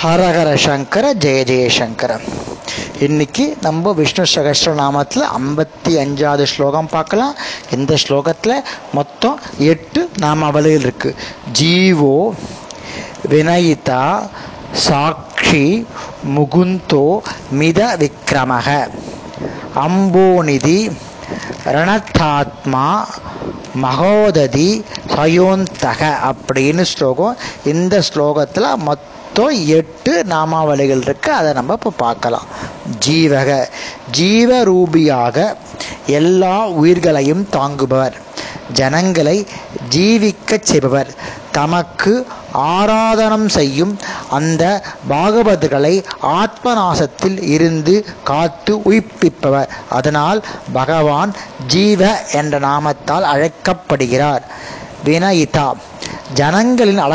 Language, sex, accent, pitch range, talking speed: Tamil, male, native, 145-190 Hz, 70 wpm